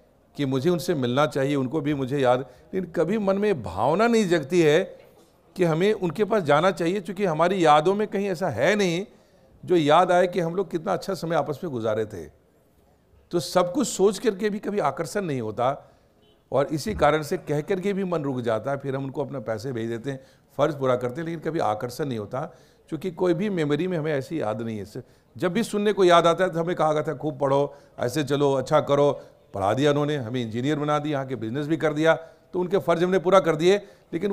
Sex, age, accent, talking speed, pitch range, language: male, 50-69, native, 230 wpm, 130-180 Hz, Hindi